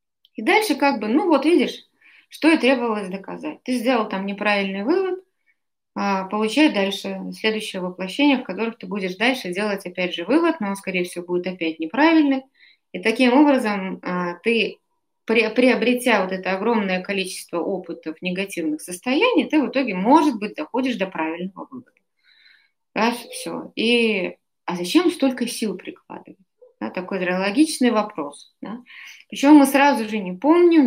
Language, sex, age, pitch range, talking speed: Russian, female, 20-39, 185-270 Hz, 145 wpm